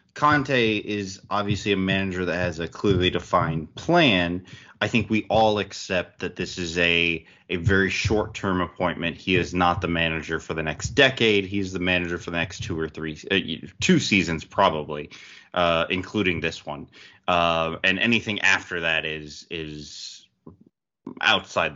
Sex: male